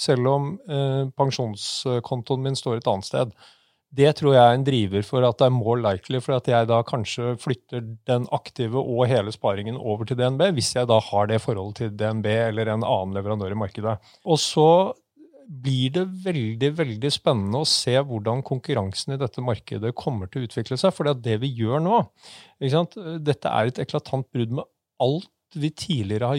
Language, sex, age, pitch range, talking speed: English, male, 30-49, 115-145 Hz, 195 wpm